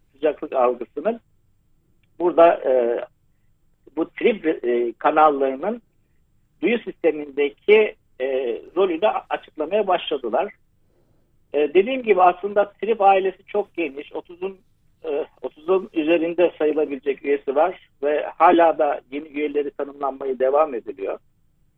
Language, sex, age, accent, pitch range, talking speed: Turkish, male, 60-79, native, 140-195 Hz, 100 wpm